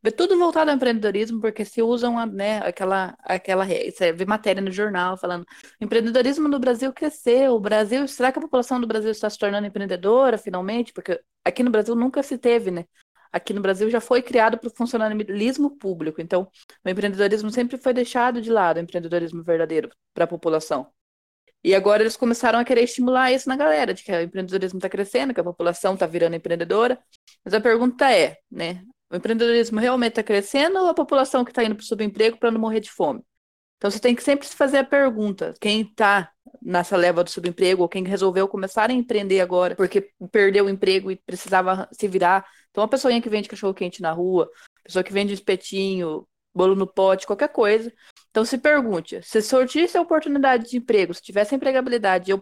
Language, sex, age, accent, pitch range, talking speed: Portuguese, female, 20-39, Brazilian, 190-250 Hz, 200 wpm